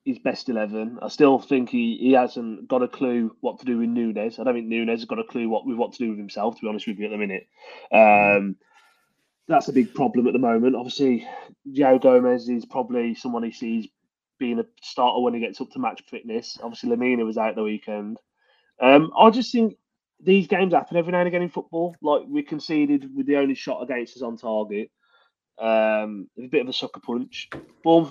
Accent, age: British, 30-49